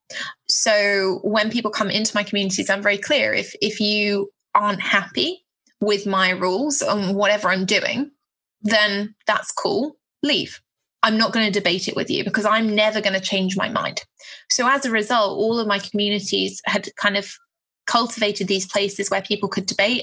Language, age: English, 20-39